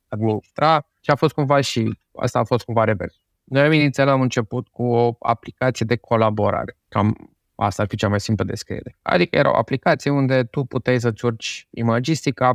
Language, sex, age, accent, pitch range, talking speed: Romanian, male, 20-39, native, 110-135 Hz, 175 wpm